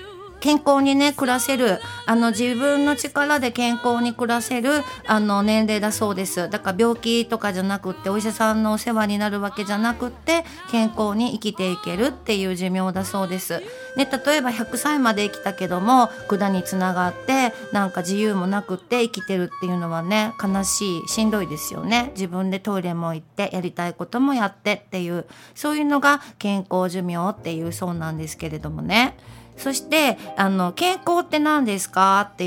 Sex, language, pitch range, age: female, Japanese, 185-255 Hz, 40-59